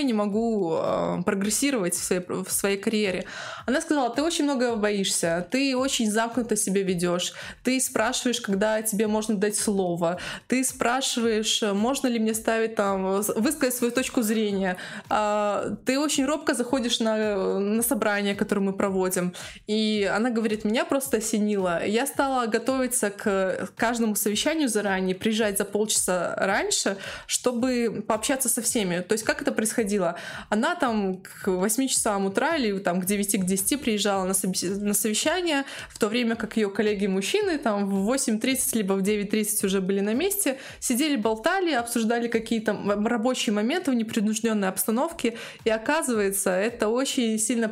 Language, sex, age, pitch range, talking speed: Russian, female, 20-39, 200-250 Hz, 145 wpm